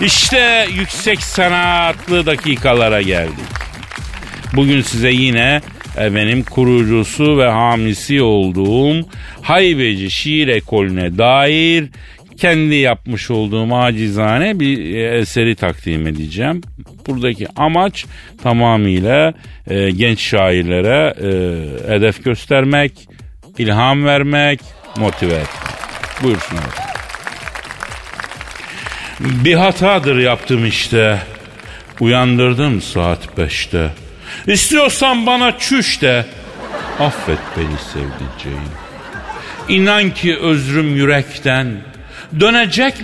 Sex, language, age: male, Turkish, 50-69